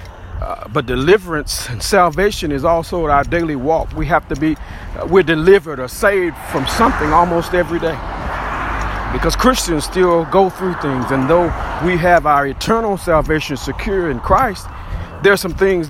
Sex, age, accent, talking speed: male, 50-69, American, 165 wpm